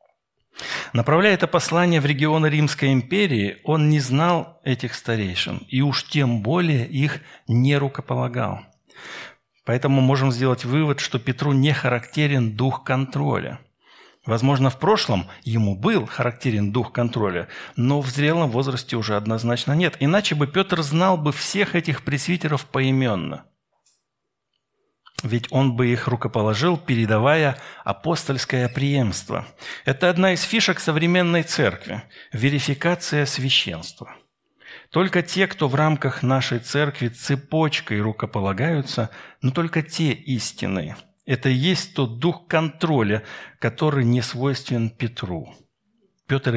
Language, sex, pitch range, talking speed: Russian, male, 120-155 Hz, 120 wpm